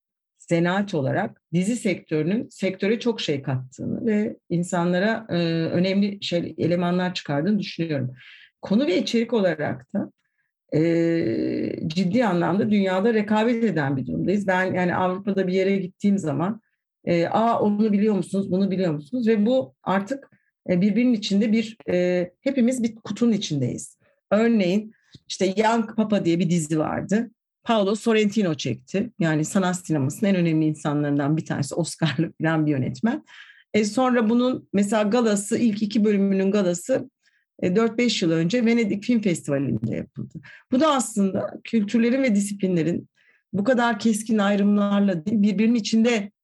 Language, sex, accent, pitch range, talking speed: Turkish, female, native, 170-225 Hz, 140 wpm